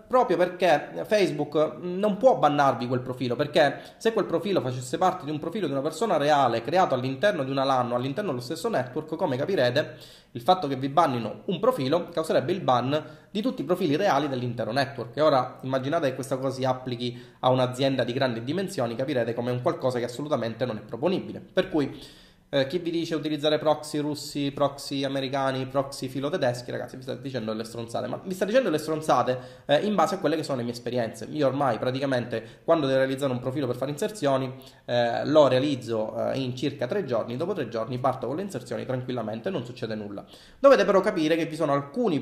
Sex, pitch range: male, 125-165 Hz